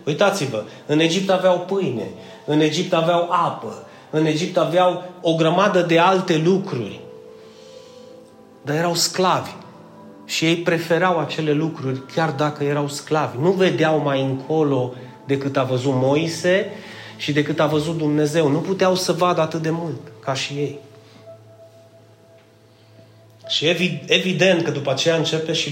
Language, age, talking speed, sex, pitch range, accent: Romanian, 30-49, 140 wpm, male, 140-180 Hz, native